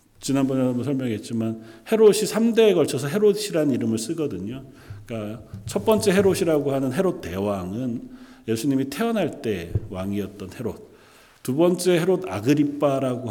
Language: Korean